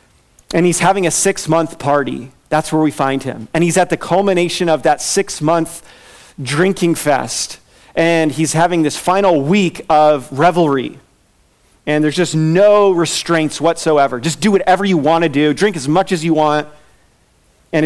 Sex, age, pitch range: male, 40-59, 150-185 Hz